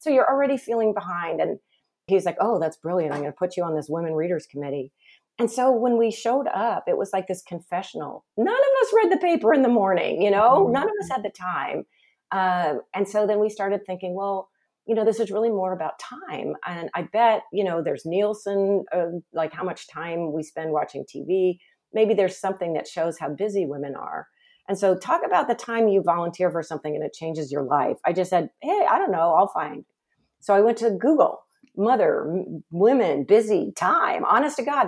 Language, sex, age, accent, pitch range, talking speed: English, female, 40-59, American, 160-220 Hz, 215 wpm